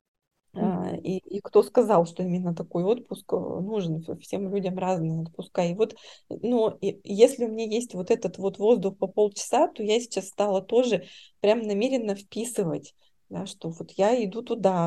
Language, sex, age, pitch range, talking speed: Russian, female, 20-39, 180-225 Hz, 160 wpm